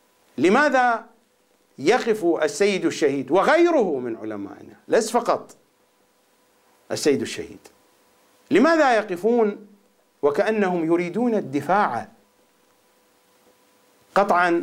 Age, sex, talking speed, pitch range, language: 50-69, male, 70 wpm, 165-210 Hz, English